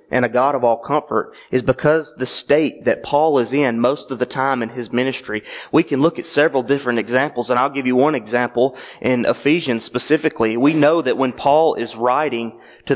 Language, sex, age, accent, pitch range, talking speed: English, male, 30-49, American, 115-150 Hz, 210 wpm